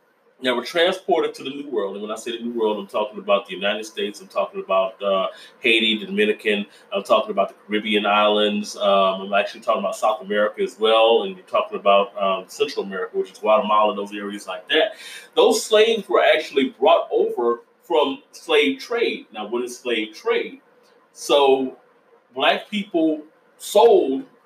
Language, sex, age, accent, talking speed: English, male, 30-49, American, 180 wpm